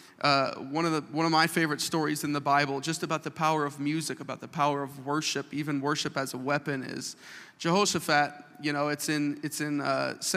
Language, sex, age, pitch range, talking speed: English, male, 40-59, 145-165 Hz, 215 wpm